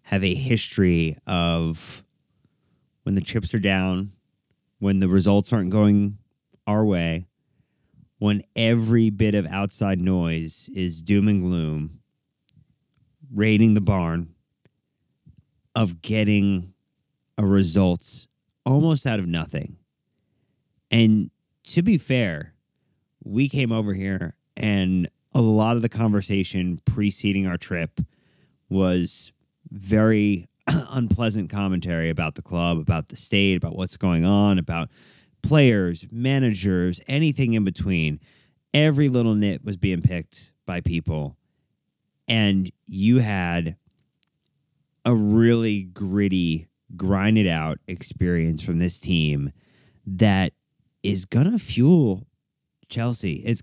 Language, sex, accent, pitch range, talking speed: English, male, American, 90-120 Hz, 115 wpm